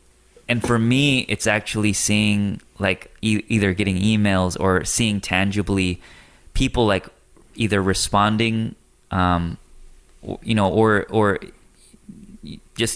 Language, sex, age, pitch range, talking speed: English, male, 20-39, 90-105 Hz, 110 wpm